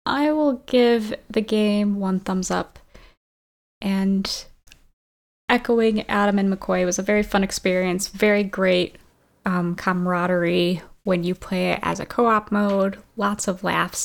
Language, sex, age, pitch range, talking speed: English, female, 10-29, 175-205 Hz, 140 wpm